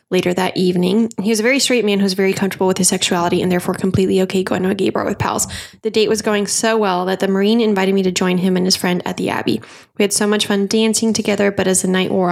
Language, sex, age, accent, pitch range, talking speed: English, female, 10-29, American, 185-220 Hz, 285 wpm